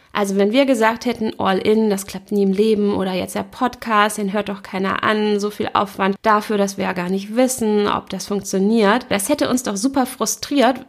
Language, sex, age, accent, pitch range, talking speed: German, female, 20-39, German, 205-250 Hz, 215 wpm